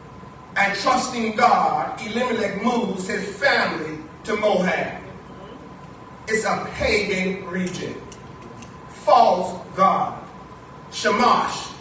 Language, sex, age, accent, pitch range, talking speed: English, male, 40-59, American, 200-250 Hz, 80 wpm